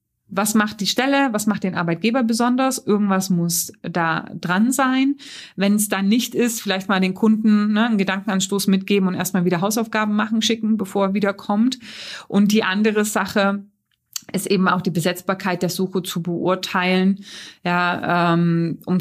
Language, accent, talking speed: German, German, 165 wpm